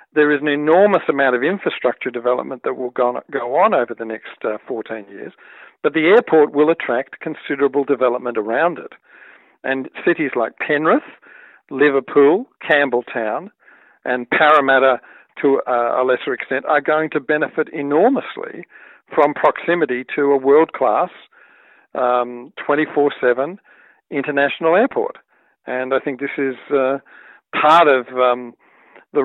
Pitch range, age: 125-150 Hz, 50-69